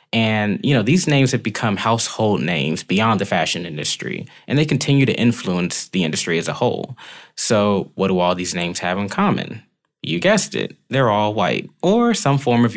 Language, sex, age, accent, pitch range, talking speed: English, male, 20-39, American, 95-135 Hz, 195 wpm